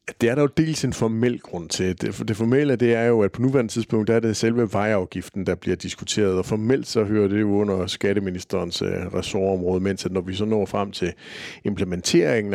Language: Danish